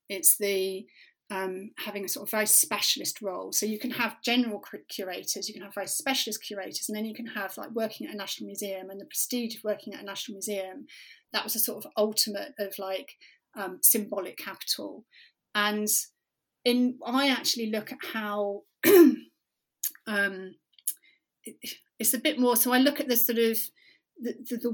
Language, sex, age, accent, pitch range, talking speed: English, female, 30-49, British, 200-255 Hz, 185 wpm